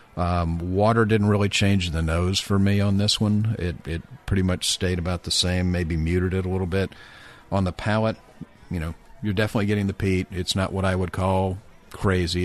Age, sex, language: 50-69, male, English